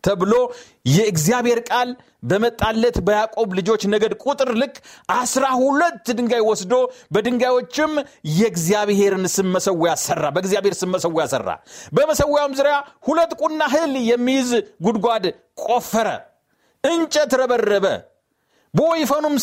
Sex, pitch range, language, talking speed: male, 215-290 Hz, Amharic, 95 wpm